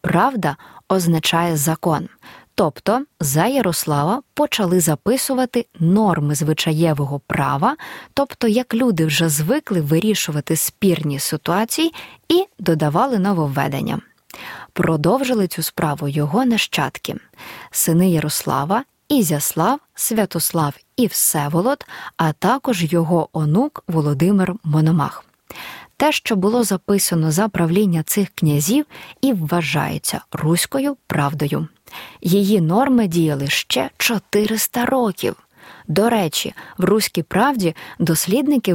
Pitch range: 160-225 Hz